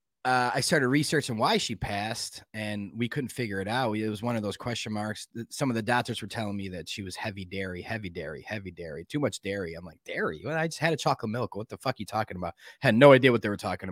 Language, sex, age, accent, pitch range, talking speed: English, male, 20-39, American, 105-150 Hz, 265 wpm